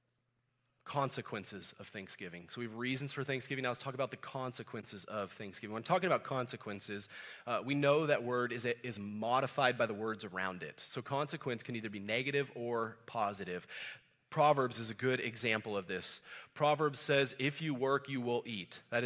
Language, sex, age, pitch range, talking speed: English, male, 30-49, 120-155 Hz, 185 wpm